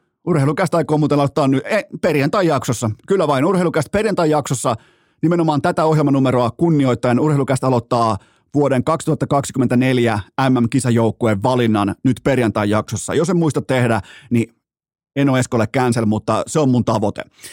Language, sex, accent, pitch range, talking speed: Finnish, male, native, 120-150 Hz, 125 wpm